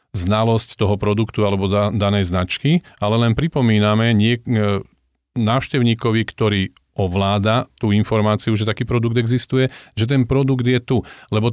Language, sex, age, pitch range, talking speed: Slovak, male, 40-59, 100-115 Hz, 125 wpm